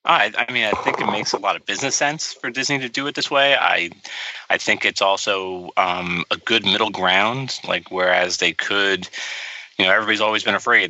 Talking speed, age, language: 215 wpm, 30-49, English